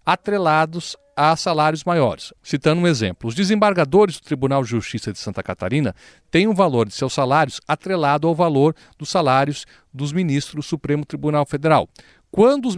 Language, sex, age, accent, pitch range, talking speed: Portuguese, male, 40-59, Brazilian, 130-180 Hz, 165 wpm